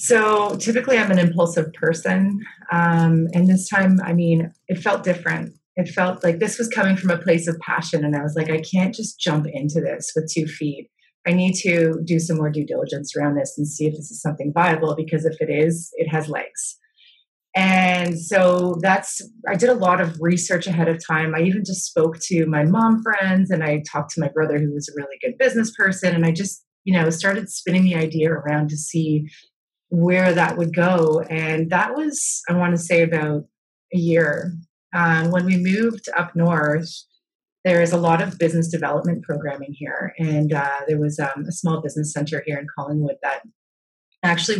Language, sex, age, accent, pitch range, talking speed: English, female, 30-49, American, 155-185 Hz, 205 wpm